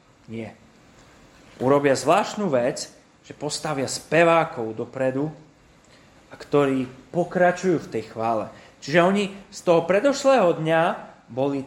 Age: 30-49